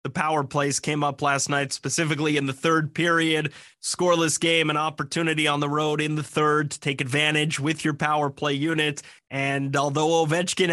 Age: 20-39